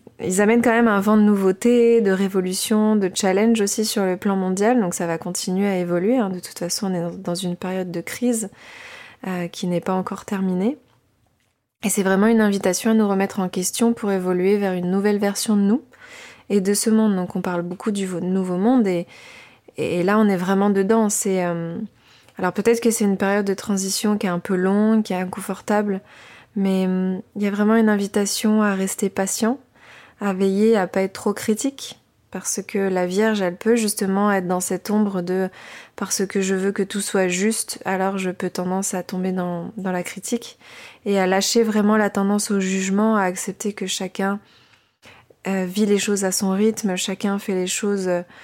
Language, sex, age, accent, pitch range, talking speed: French, female, 20-39, French, 185-210 Hz, 205 wpm